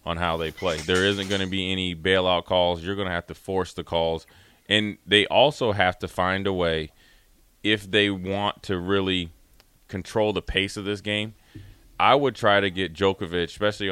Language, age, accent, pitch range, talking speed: English, 30-49, American, 85-100 Hz, 200 wpm